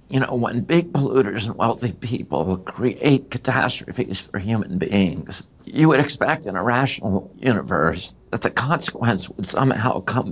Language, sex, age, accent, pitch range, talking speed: English, male, 60-79, American, 95-125 Hz, 150 wpm